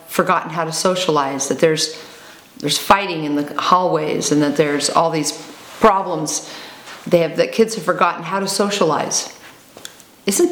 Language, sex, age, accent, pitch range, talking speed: English, female, 40-59, American, 155-185 Hz, 155 wpm